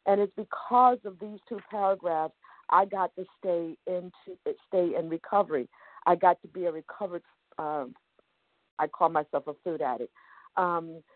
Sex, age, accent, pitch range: female, 50-69, American, 165-200 Hz